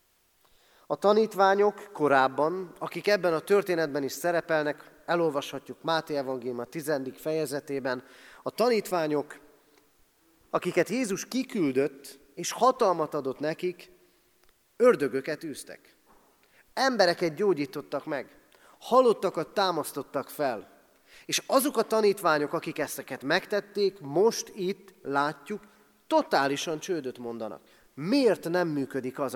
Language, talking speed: Hungarian, 100 wpm